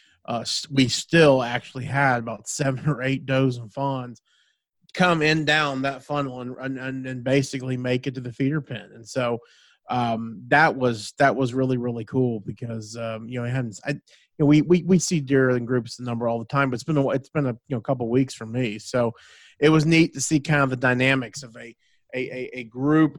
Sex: male